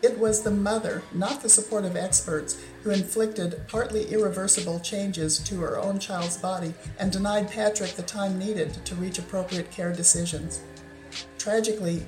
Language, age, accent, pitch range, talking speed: English, 50-69, American, 165-200 Hz, 155 wpm